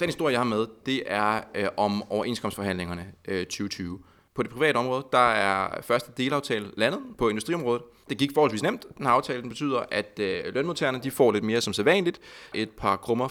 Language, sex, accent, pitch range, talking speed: Danish, male, native, 100-130 Hz, 190 wpm